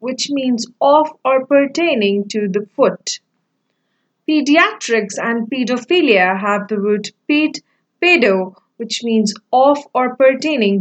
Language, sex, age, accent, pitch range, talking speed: English, female, 30-49, Indian, 215-285 Hz, 115 wpm